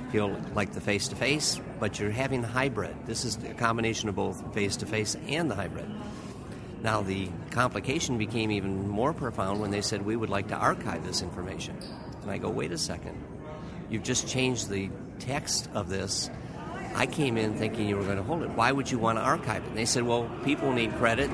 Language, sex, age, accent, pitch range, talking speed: English, male, 50-69, American, 105-140 Hz, 205 wpm